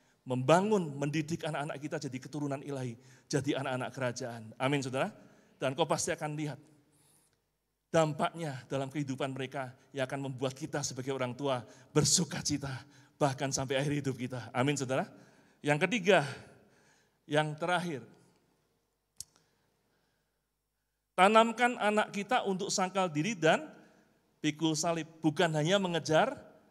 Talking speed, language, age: 120 wpm, Indonesian, 30-49